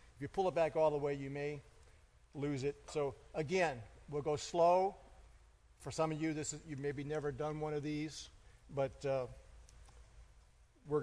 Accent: American